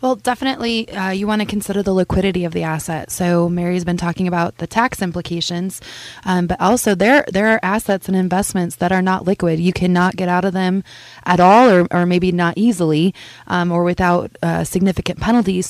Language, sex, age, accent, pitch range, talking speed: English, female, 20-39, American, 170-190 Hz, 200 wpm